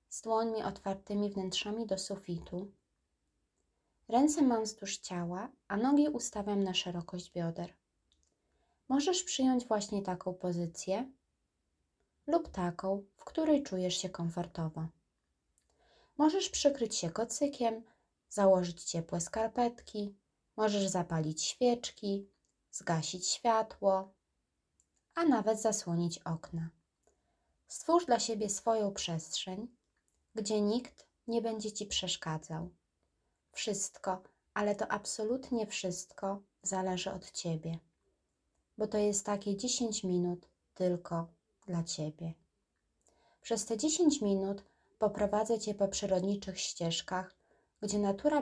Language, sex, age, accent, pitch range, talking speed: Polish, female, 20-39, native, 180-225 Hz, 105 wpm